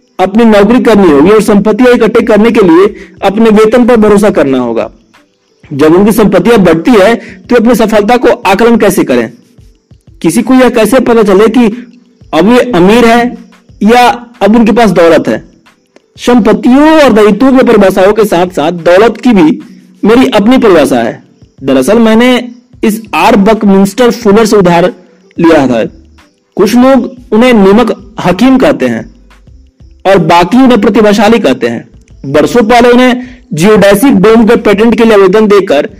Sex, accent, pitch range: male, native, 195-245 Hz